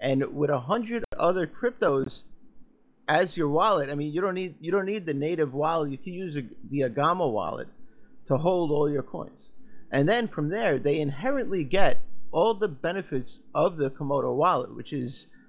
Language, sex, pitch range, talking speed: English, male, 140-185 Hz, 185 wpm